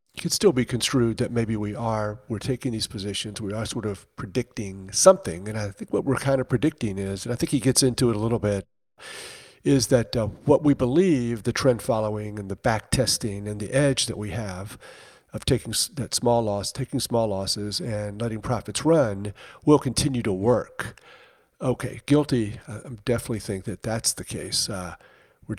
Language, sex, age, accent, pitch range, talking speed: English, male, 50-69, American, 105-130 Hz, 195 wpm